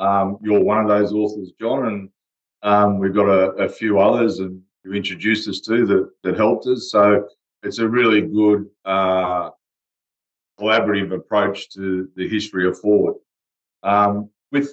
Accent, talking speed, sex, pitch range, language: Australian, 160 wpm, male, 90-105 Hz, English